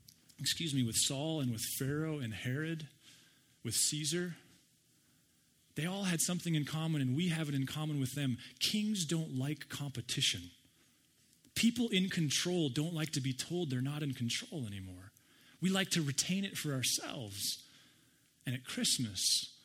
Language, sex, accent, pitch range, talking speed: English, male, American, 130-165 Hz, 160 wpm